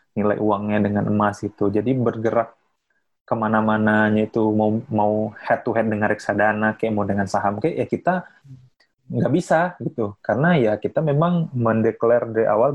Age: 20-39